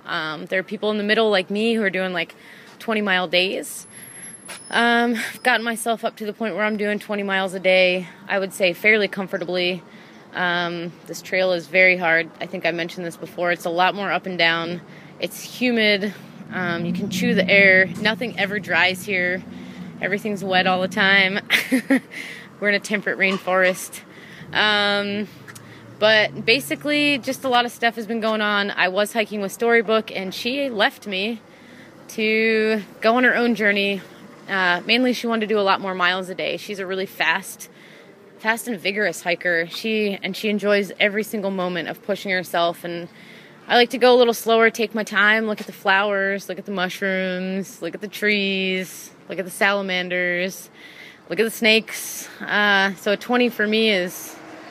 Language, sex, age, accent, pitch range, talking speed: English, female, 20-39, American, 185-220 Hz, 190 wpm